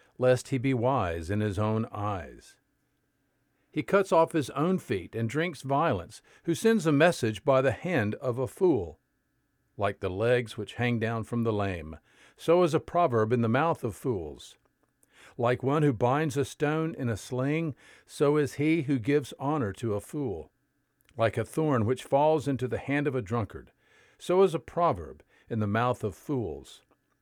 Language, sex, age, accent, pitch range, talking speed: English, male, 50-69, American, 110-150 Hz, 185 wpm